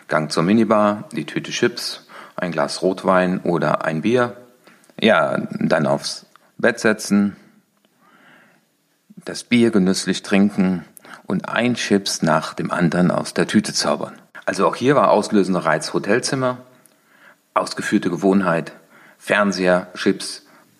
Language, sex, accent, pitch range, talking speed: German, male, German, 90-120 Hz, 120 wpm